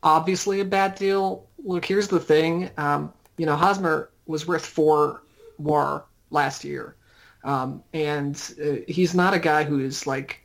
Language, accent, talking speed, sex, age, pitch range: English, American, 160 wpm, male, 30-49, 145-170 Hz